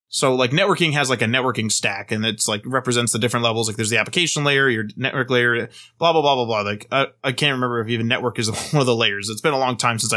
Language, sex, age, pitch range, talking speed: English, male, 20-39, 115-150 Hz, 275 wpm